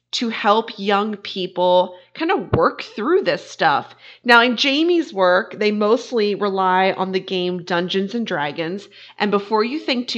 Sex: female